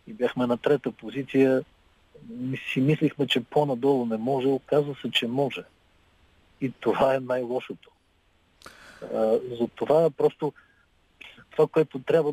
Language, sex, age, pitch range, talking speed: Bulgarian, male, 50-69, 120-145 Hz, 125 wpm